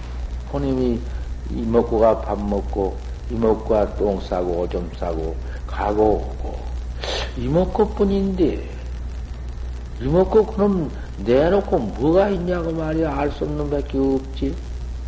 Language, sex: Korean, male